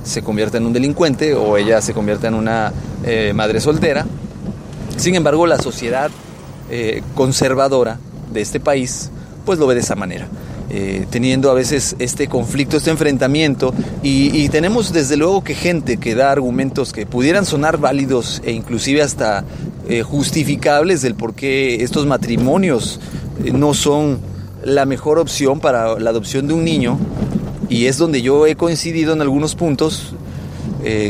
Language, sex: Spanish, male